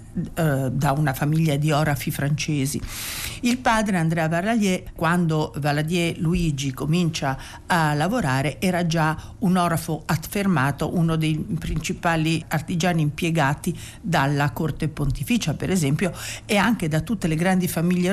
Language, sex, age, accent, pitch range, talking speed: Italian, female, 50-69, native, 155-205 Hz, 125 wpm